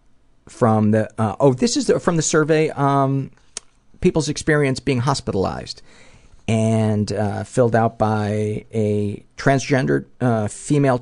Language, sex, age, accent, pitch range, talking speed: English, male, 50-69, American, 95-120 Hz, 130 wpm